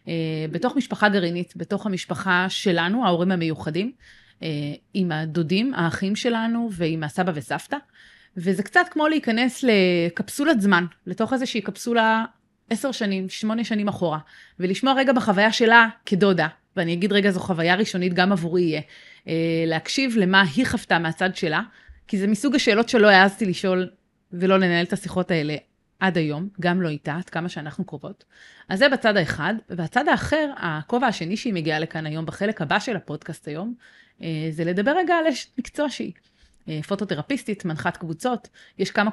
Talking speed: 150 wpm